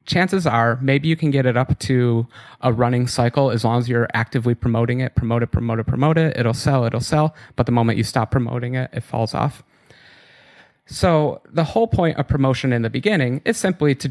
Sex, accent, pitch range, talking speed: male, American, 115-140 Hz, 215 wpm